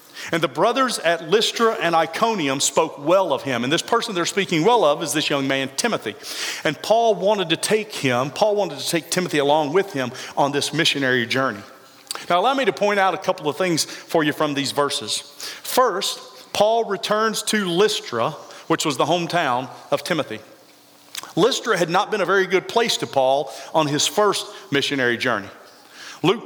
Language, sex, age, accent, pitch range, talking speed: English, male, 40-59, American, 145-205 Hz, 190 wpm